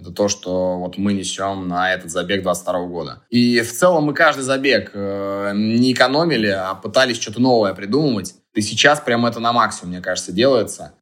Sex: male